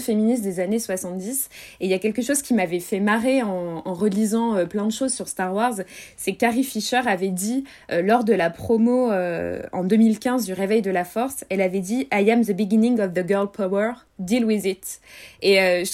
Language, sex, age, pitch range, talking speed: French, female, 20-39, 190-235 Hz, 230 wpm